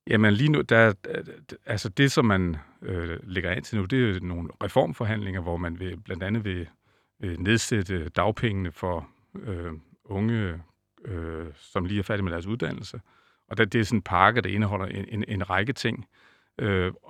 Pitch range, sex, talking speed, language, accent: 95-115 Hz, male, 185 wpm, Danish, native